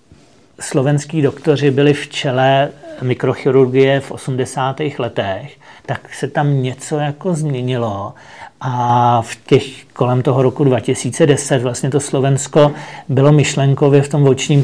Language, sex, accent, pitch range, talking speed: English, male, Czech, 115-140 Hz, 125 wpm